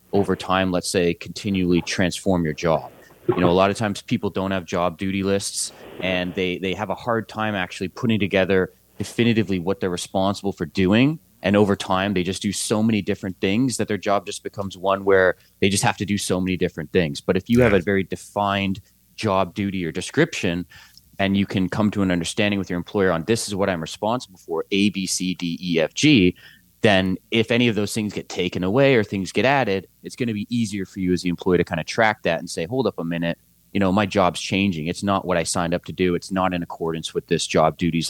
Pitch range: 85-105 Hz